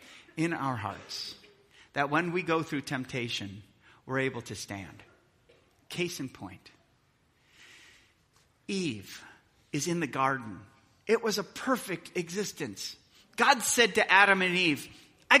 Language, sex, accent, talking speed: English, male, American, 130 wpm